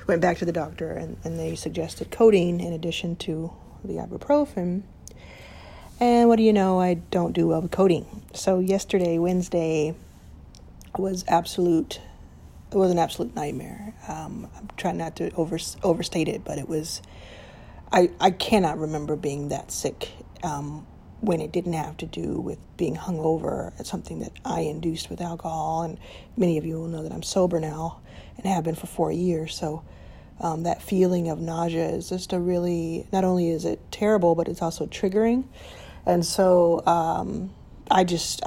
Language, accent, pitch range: English, American, 160-185 Hz